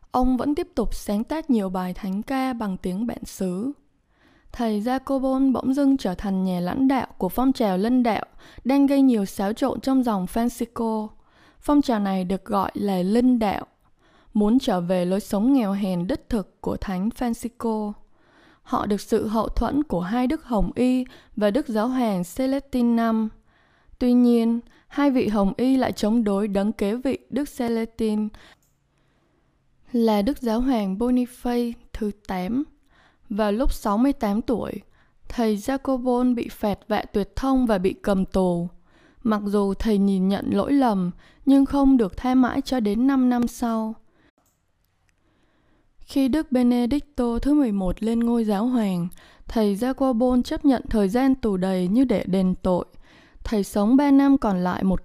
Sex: female